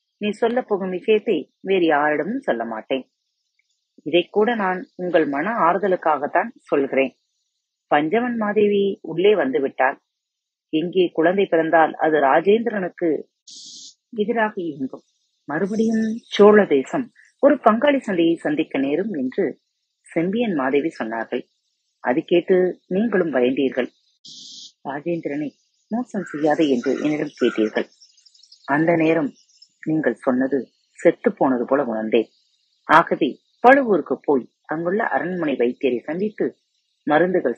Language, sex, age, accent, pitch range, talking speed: Tamil, female, 30-49, native, 135-205 Hz, 100 wpm